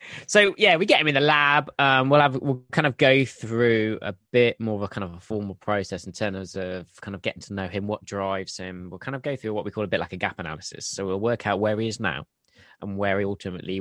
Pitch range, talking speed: 95-115 Hz, 280 wpm